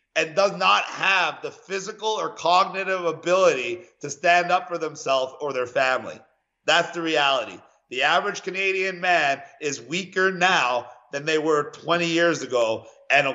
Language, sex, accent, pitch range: English, male, American, 150-190 Hz